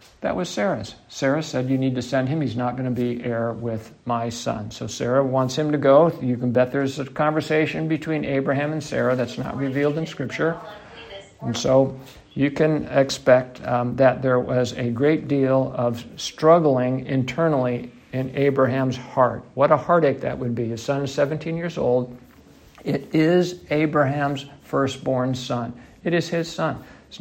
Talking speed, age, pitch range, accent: 175 wpm, 60-79, 125-150 Hz, American